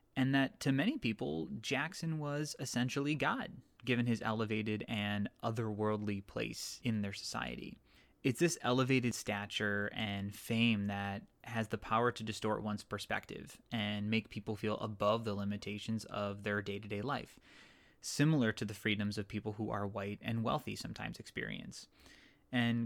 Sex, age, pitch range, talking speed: male, 20-39, 105-115 Hz, 150 wpm